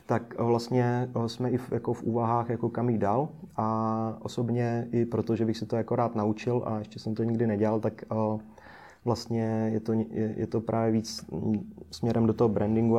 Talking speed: 210 wpm